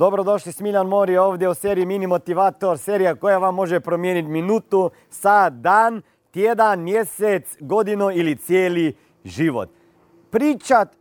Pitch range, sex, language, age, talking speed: 160-235 Hz, male, Croatian, 40-59, 125 wpm